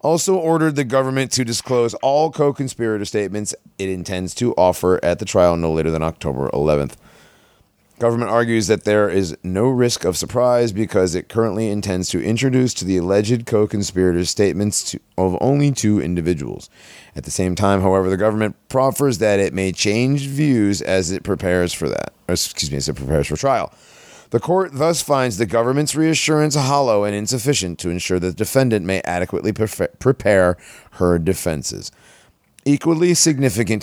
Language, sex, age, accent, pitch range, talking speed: English, male, 30-49, American, 90-125 Hz, 165 wpm